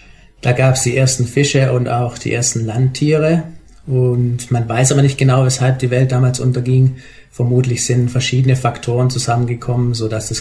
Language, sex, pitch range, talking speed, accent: German, male, 120-135 Hz, 165 wpm, German